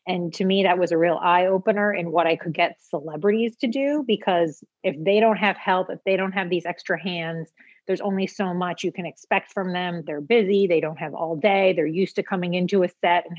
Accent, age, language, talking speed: American, 30-49, English, 240 wpm